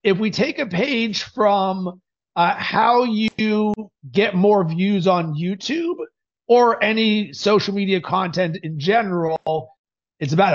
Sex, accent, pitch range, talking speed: male, American, 180-220 Hz, 130 wpm